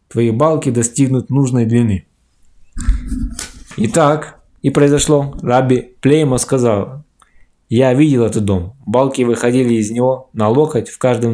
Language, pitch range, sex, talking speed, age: Russian, 110-135 Hz, male, 125 wpm, 20-39